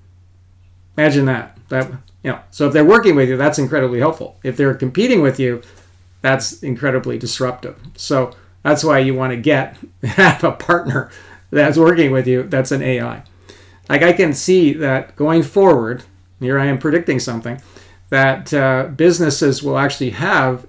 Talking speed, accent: 165 wpm, American